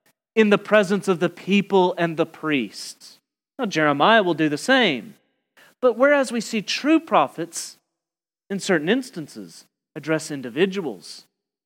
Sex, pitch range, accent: male, 160-210 Hz, American